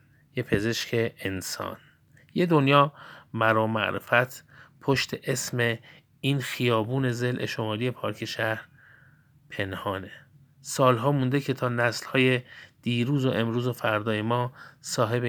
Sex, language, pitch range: male, Persian, 110-135 Hz